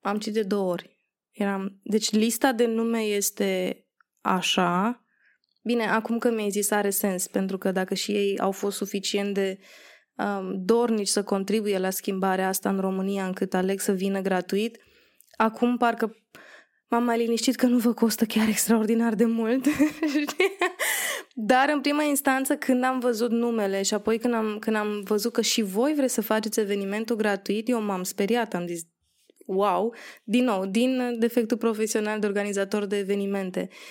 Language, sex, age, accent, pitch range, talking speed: Romanian, female, 20-39, native, 200-240 Hz, 160 wpm